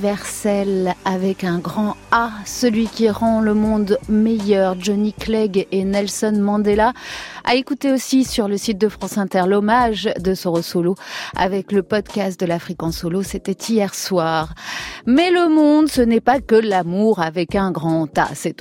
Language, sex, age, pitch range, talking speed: French, female, 30-49, 195-260 Hz, 165 wpm